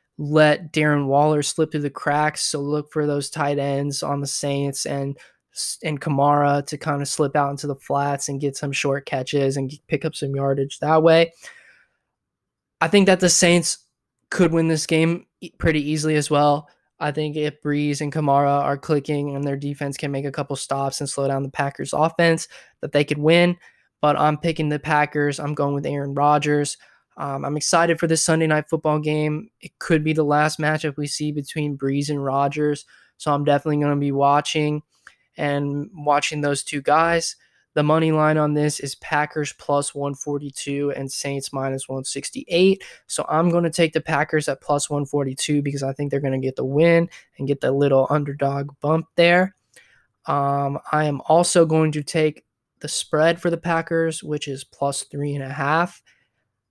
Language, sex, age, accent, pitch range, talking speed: English, male, 20-39, American, 140-155 Hz, 190 wpm